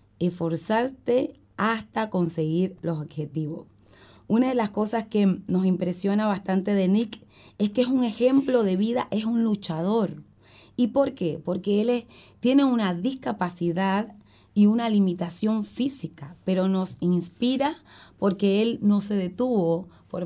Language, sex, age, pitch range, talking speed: Spanish, female, 30-49, 165-225 Hz, 135 wpm